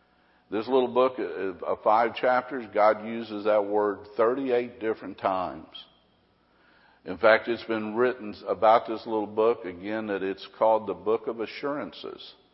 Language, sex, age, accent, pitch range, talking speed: English, male, 50-69, American, 100-125 Hz, 145 wpm